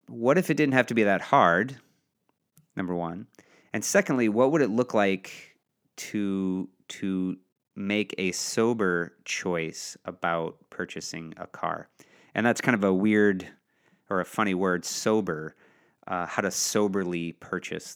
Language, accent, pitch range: English, American, 90-110 Hz